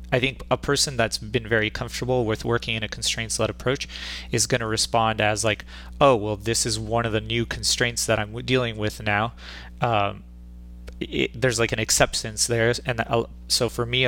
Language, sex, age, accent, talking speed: English, male, 30-49, American, 200 wpm